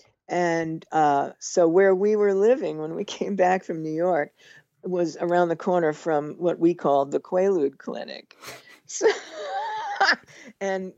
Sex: female